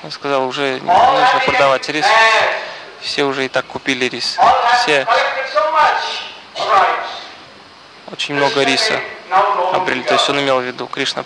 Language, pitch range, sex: Russian, 140-230 Hz, male